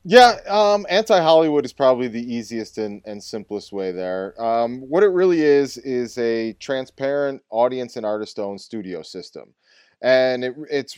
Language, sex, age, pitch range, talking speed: English, male, 30-49, 105-140 Hz, 160 wpm